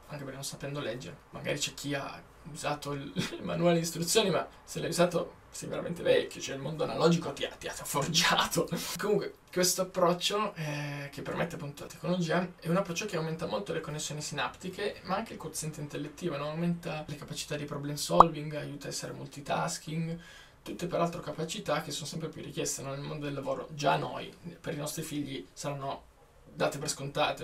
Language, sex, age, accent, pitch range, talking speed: Italian, male, 20-39, native, 145-175 Hz, 190 wpm